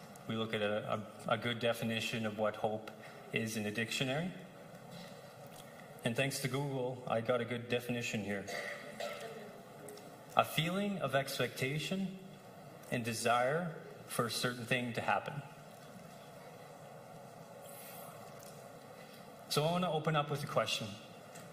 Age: 30-49